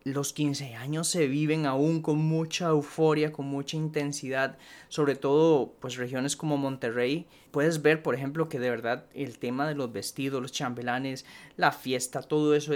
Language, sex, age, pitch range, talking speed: Spanish, male, 20-39, 135-155 Hz, 170 wpm